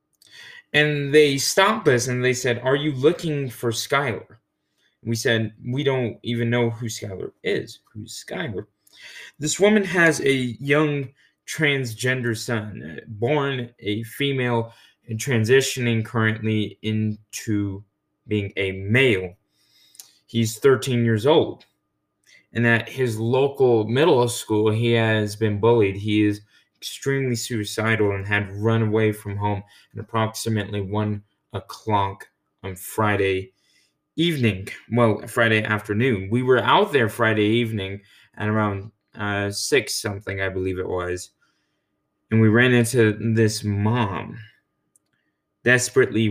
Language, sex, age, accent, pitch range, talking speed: English, male, 20-39, American, 105-130 Hz, 125 wpm